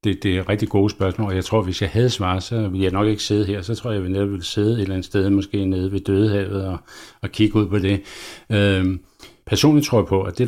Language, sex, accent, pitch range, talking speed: Danish, male, native, 90-105 Hz, 280 wpm